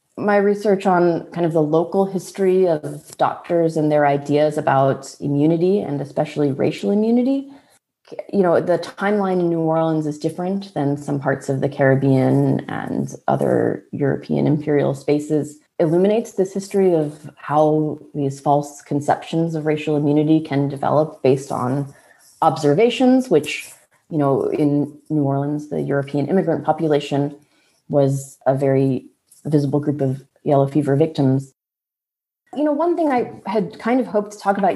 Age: 30-49